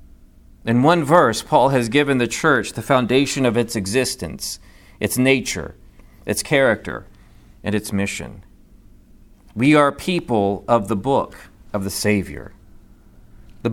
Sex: male